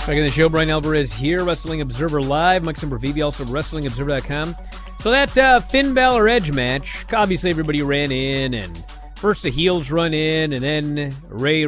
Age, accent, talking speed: 30-49, American, 180 wpm